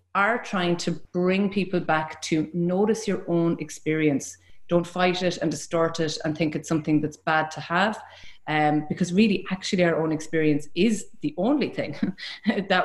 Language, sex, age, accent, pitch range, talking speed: English, female, 30-49, Irish, 155-185 Hz, 175 wpm